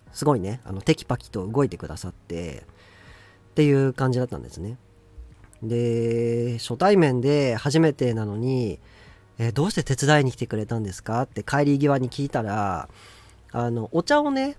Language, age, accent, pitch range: Japanese, 40-59, native, 100-160 Hz